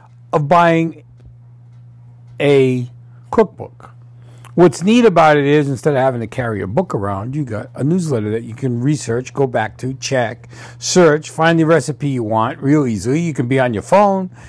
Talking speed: 180 wpm